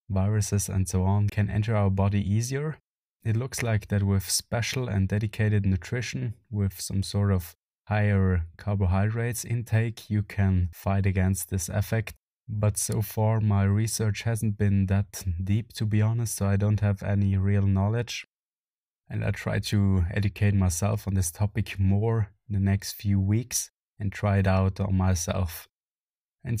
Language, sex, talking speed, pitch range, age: English, male, 160 wpm, 95-110 Hz, 20-39